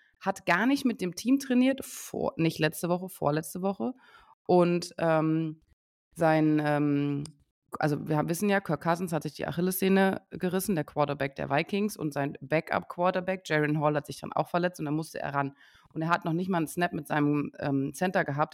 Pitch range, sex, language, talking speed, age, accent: 150-185 Hz, female, German, 195 wpm, 30-49, German